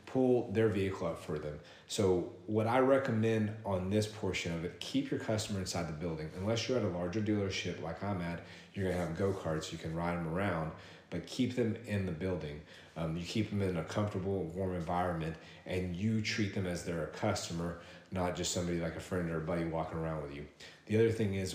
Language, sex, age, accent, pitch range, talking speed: English, male, 30-49, American, 90-110 Hz, 220 wpm